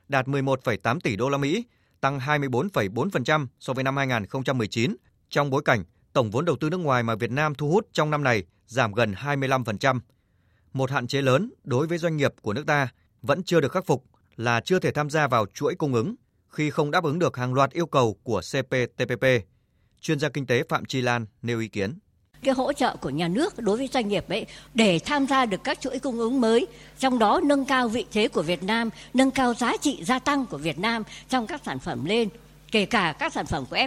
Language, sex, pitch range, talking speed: Vietnamese, male, 135-225 Hz, 225 wpm